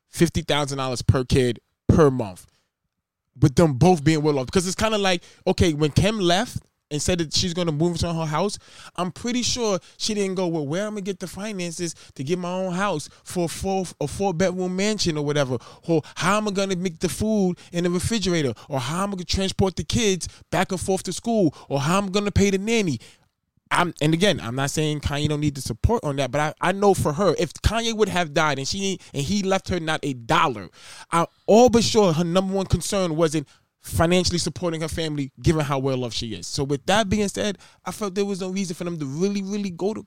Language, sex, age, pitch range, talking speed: English, male, 20-39, 140-190 Hz, 240 wpm